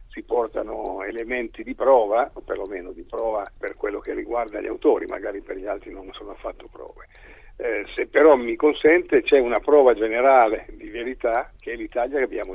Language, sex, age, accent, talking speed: Italian, male, 50-69, native, 185 wpm